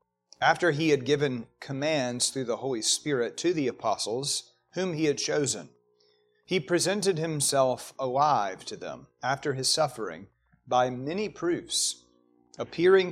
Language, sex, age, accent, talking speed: English, male, 40-59, American, 135 wpm